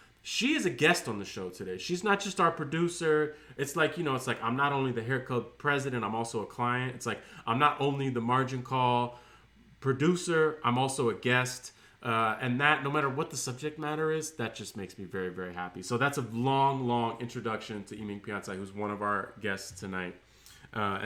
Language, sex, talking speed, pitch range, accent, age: English, male, 215 wpm, 100-140 Hz, American, 30-49